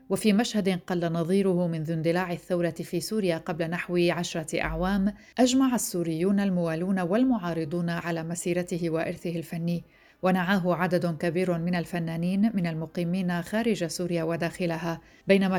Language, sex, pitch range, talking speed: Arabic, female, 165-190 Hz, 125 wpm